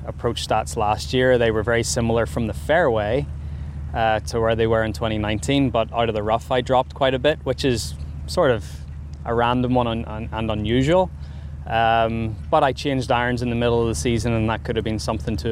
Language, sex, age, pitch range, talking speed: German, male, 20-39, 95-120 Hz, 220 wpm